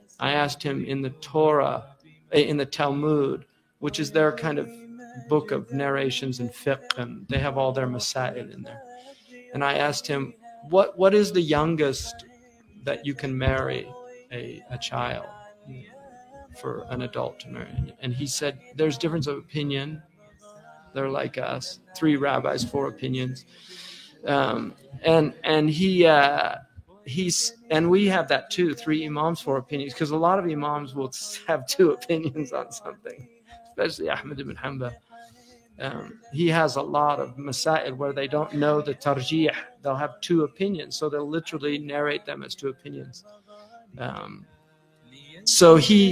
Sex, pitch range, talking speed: male, 135-185 Hz, 155 wpm